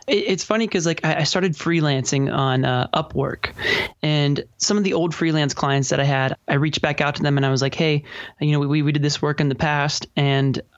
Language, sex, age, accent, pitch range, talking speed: English, male, 20-39, American, 135-155 Hz, 235 wpm